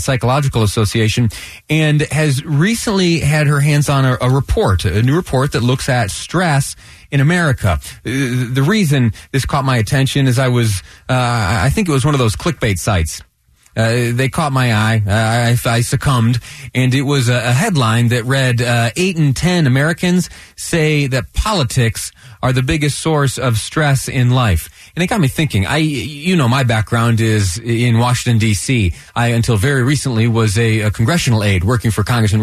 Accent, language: American, English